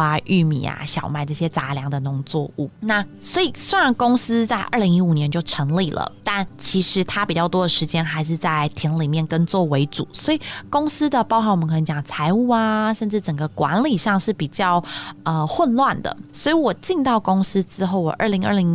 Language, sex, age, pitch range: Chinese, female, 20-39, 160-200 Hz